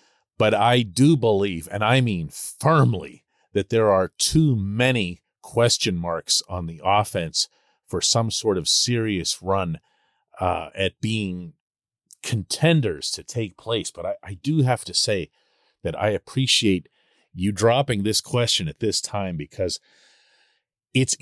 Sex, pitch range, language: male, 95-130 Hz, English